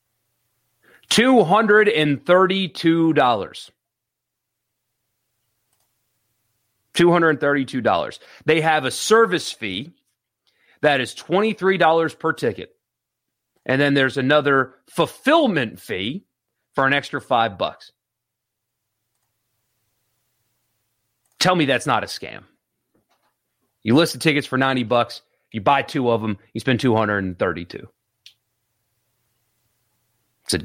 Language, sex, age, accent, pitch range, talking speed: English, male, 40-59, American, 115-150 Hz, 110 wpm